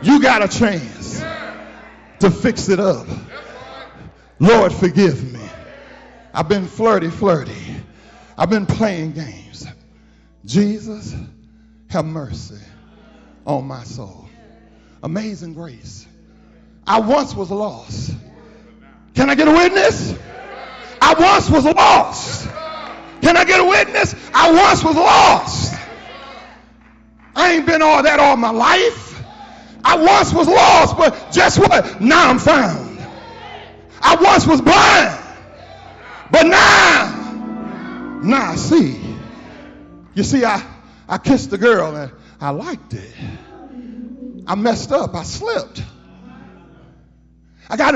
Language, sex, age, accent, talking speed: English, male, 40-59, American, 120 wpm